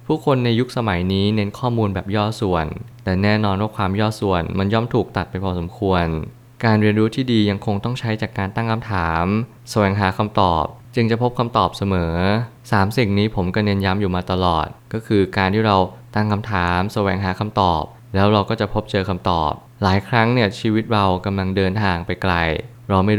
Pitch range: 95-115 Hz